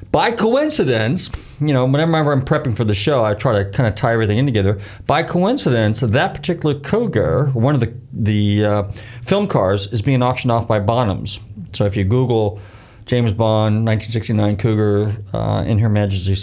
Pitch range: 100-120 Hz